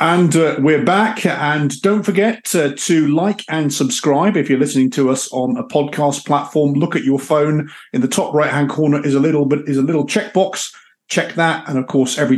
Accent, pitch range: British, 130-170 Hz